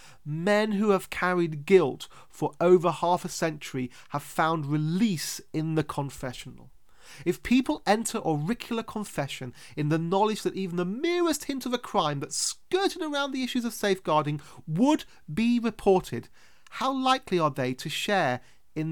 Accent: British